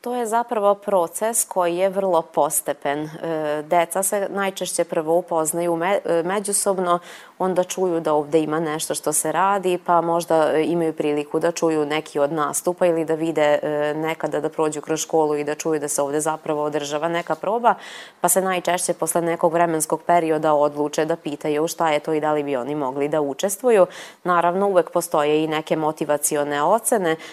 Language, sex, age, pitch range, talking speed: Croatian, female, 20-39, 150-175 Hz, 175 wpm